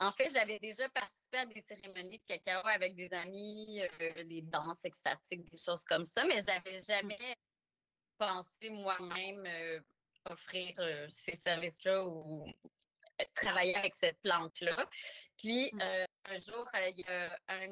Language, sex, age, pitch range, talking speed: French, female, 30-49, 170-210 Hz, 150 wpm